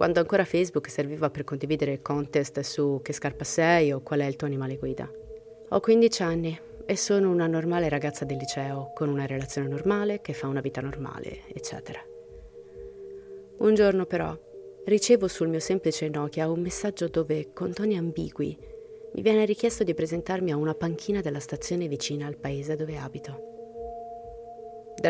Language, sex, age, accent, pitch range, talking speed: Italian, female, 30-49, native, 145-230 Hz, 165 wpm